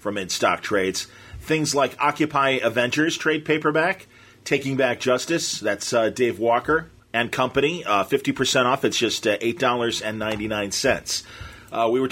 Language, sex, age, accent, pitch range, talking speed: English, male, 40-59, American, 115-145 Hz, 140 wpm